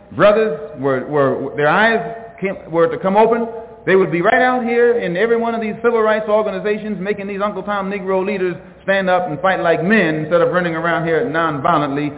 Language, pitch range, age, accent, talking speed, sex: English, 175-270 Hz, 40-59, American, 200 wpm, male